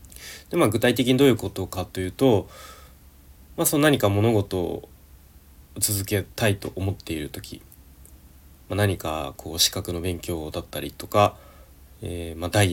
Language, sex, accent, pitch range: Japanese, male, native, 75-110 Hz